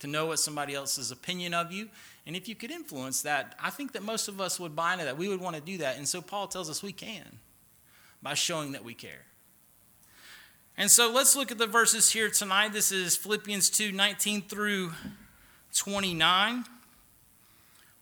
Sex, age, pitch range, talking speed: male, 40-59, 200-260 Hz, 195 wpm